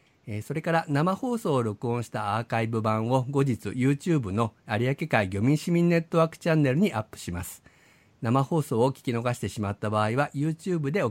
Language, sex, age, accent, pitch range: Japanese, male, 50-69, native, 105-145 Hz